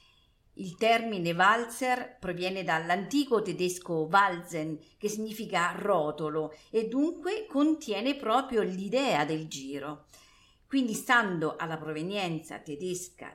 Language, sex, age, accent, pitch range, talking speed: Italian, female, 50-69, native, 160-225 Hz, 100 wpm